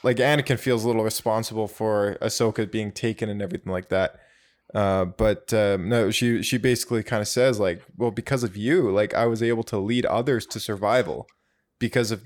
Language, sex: English, male